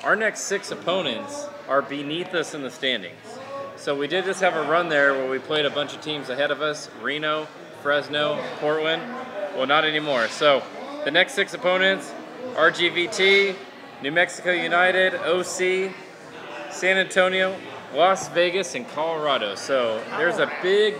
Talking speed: 155 wpm